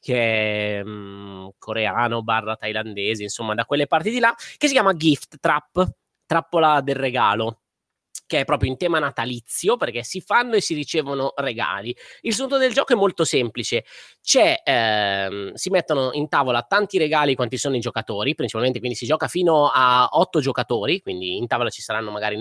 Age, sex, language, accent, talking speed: 20-39, male, Italian, native, 175 wpm